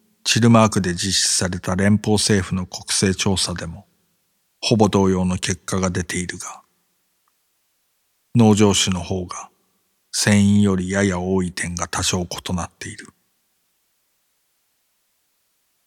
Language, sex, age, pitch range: Japanese, male, 50-69, 90-105 Hz